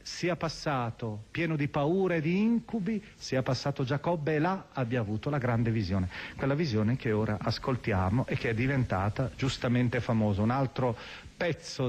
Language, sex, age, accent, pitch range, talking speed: Italian, male, 40-59, native, 110-155 Hz, 160 wpm